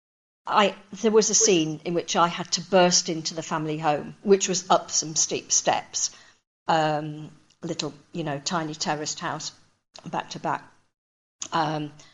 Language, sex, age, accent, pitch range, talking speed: English, female, 50-69, British, 155-185 Hz, 160 wpm